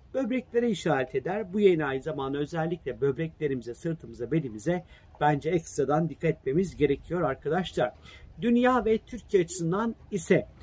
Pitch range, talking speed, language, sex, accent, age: 150-185 Hz, 125 wpm, Turkish, male, native, 50-69